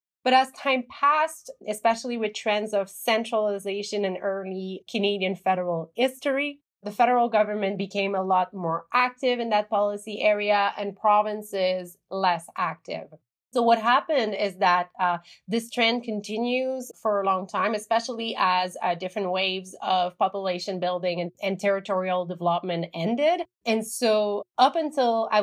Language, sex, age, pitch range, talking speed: English, female, 30-49, 185-245 Hz, 145 wpm